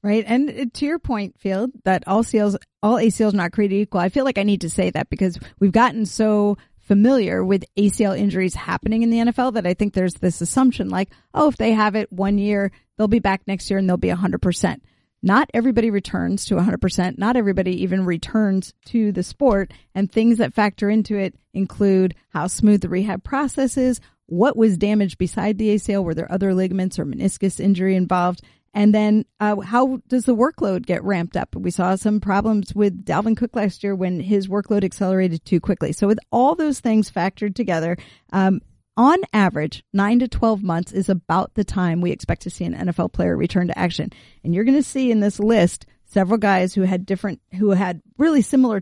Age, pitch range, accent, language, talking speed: 40-59, 185-230 Hz, American, English, 205 wpm